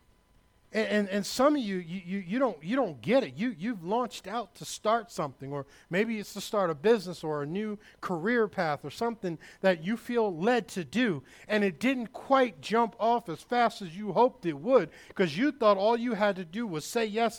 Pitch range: 210-275 Hz